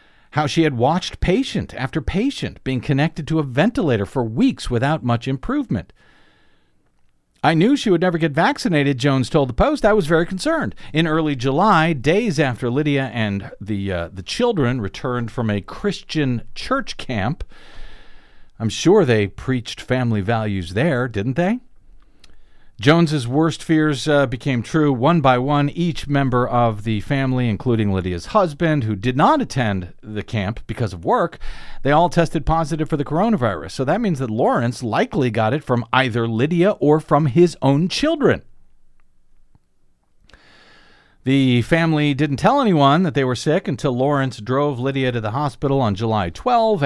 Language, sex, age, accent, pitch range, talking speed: English, male, 50-69, American, 120-160 Hz, 160 wpm